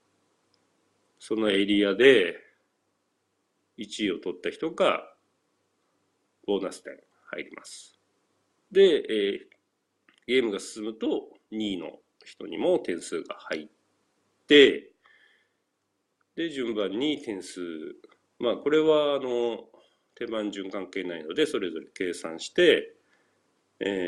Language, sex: Japanese, male